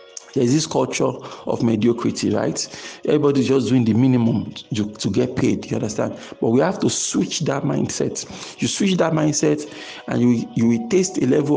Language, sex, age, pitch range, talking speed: English, male, 50-69, 120-160 Hz, 175 wpm